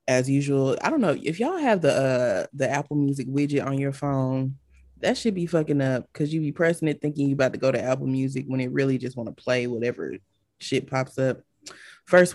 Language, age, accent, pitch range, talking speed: English, 20-39, American, 125-145 Hz, 230 wpm